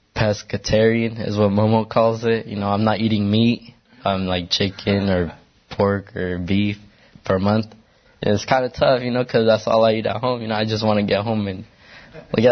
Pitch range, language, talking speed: 105-125 Hz, English, 215 wpm